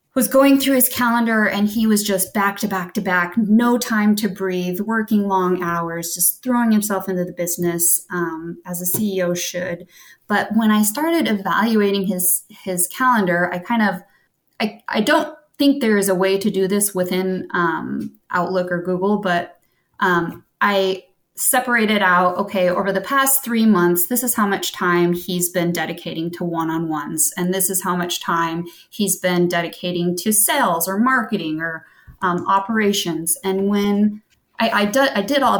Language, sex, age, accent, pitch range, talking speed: English, female, 20-39, American, 175-215 Hz, 175 wpm